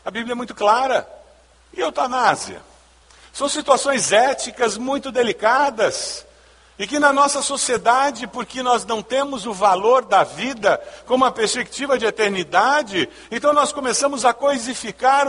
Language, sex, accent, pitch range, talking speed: Portuguese, male, Brazilian, 215-290 Hz, 135 wpm